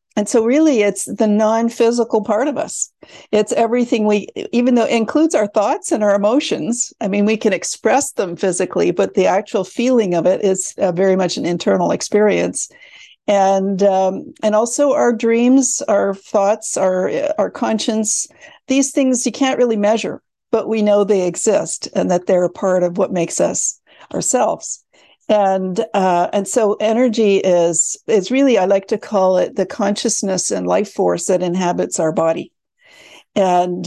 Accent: American